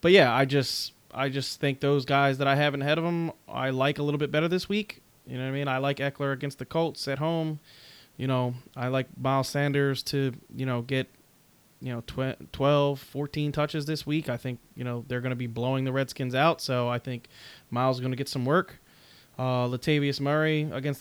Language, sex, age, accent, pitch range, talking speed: English, male, 20-39, American, 125-150 Hz, 230 wpm